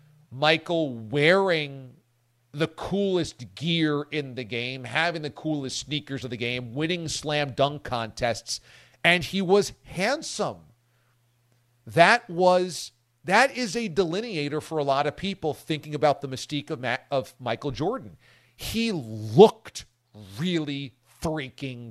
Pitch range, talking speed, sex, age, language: 120-175 Hz, 130 wpm, male, 40-59, English